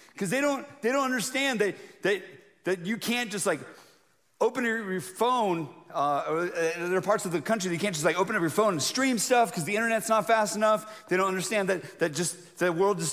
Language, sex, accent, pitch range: English, male, American, 165-215 Hz